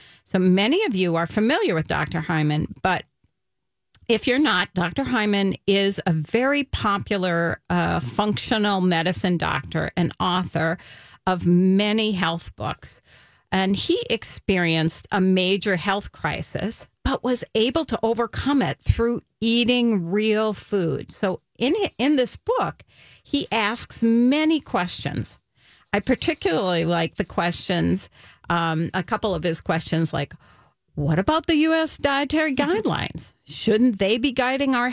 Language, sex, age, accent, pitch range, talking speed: English, female, 40-59, American, 175-250 Hz, 135 wpm